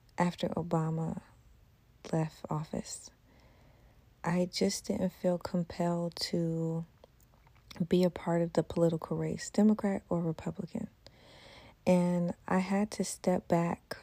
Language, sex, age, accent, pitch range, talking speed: English, female, 30-49, American, 170-195 Hz, 110 wpm